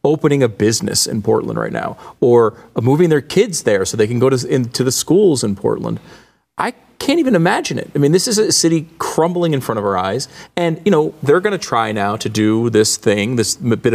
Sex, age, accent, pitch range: male, 40-59, American, 110-155 Hz